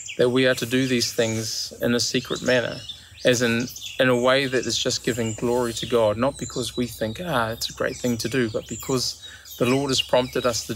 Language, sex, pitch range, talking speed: English, male, 110-130 Hz, 235 wpm